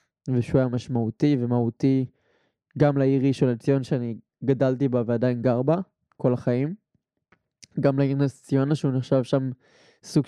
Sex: male